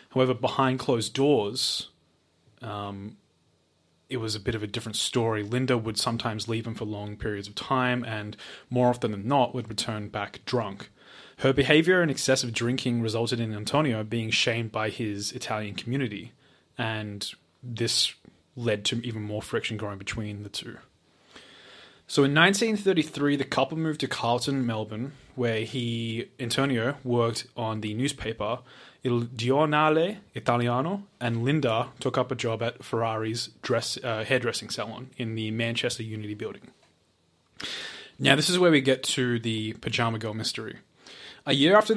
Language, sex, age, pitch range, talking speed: English, male, 20-39, 110-130 Hz, 155 wpm